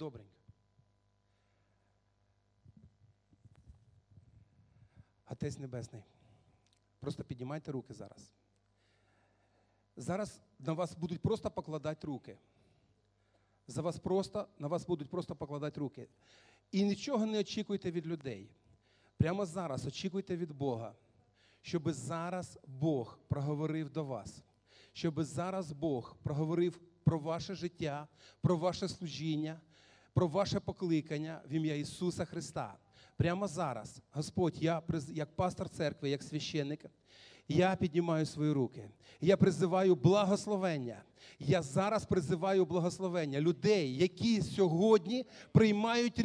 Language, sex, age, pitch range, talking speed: Russian, male, 40-59, 110-180 Hz, 105 wpm